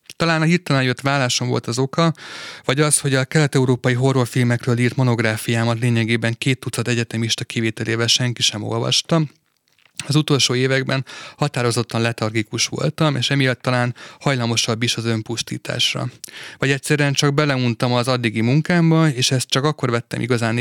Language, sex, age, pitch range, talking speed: Hungarian, male, 30-49, 115-140 Hz, 145 wpm